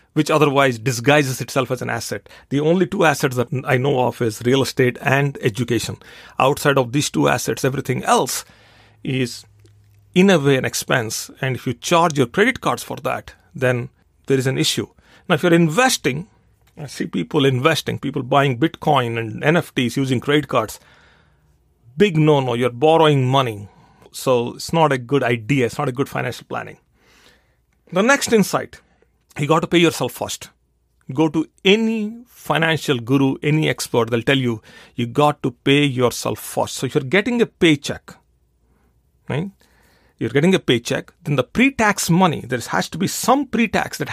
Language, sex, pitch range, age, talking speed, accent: English, male, 125-160 Hz, 40-59, 175 wpm, Indian